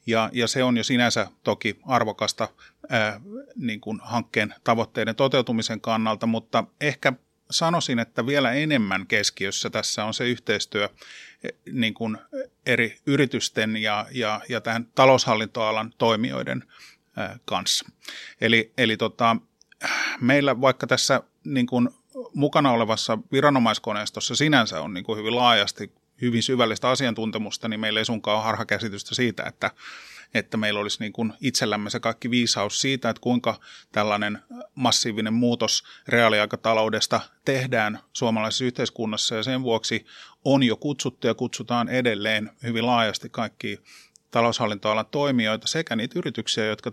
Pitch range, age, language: 110-130 Hz, 30-49, Finnish